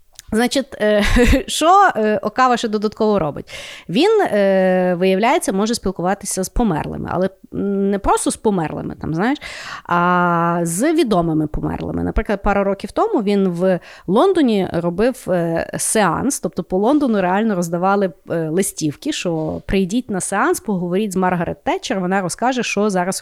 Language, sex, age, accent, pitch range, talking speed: Ukrainian, female, 30-49, native, 185-245 Hz, 125 wpm